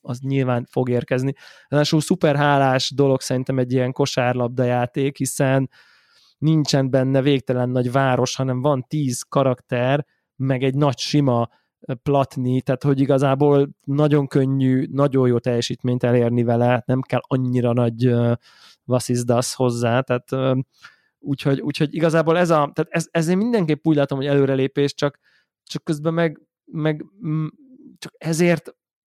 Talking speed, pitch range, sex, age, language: 135 wpm, 125-150 Hz, male, 20-39, Hungarian